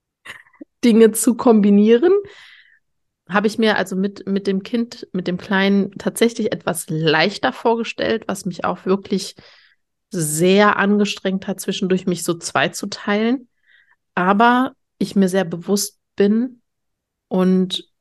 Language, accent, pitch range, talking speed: German, German, 175-215 Hz, 125 wpm